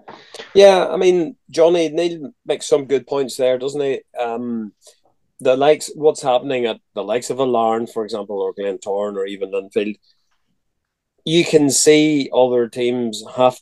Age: 30-49